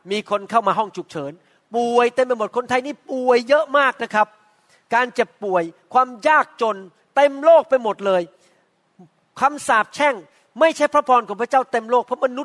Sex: male